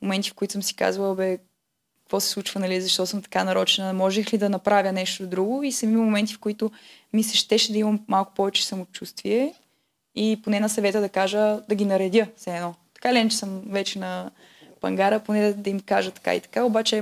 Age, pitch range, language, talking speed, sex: 20-39, 190-220 Hz, Bulgarian, 210 wpm, female